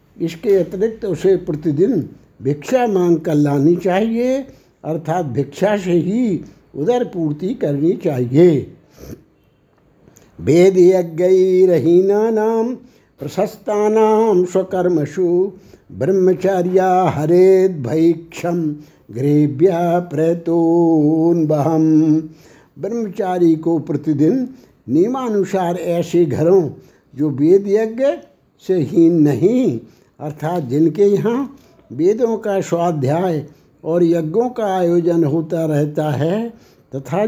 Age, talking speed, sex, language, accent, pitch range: 60-79, 85 wpm, male, Hindi, native, 160-195 Hz